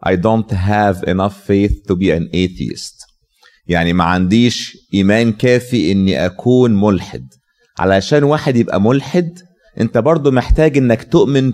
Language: Arabic